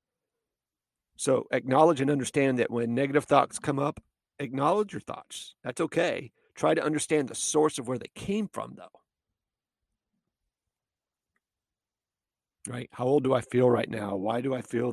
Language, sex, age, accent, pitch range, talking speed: English, male, 40-59, American, 130-155 Hz, 155 wpm